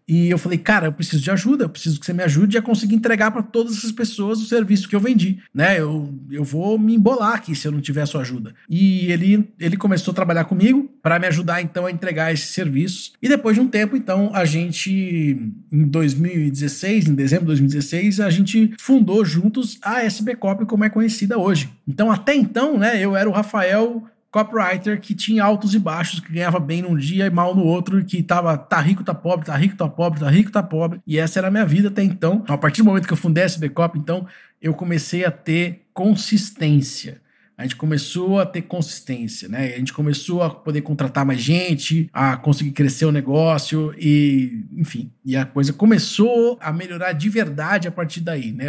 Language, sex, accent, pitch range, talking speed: Portuguese, male, Brazilian, 150-200 Hz, 215 wpm